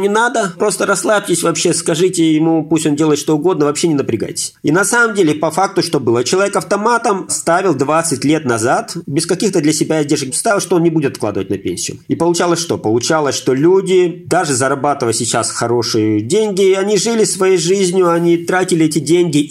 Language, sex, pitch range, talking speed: Russian, male, 130-175 Hz, 190 wpm